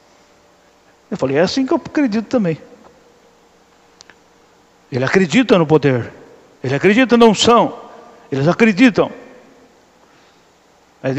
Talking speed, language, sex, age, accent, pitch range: 105 wpm, Portuguese, male, 60-79, Brazilian, 140-200 Hz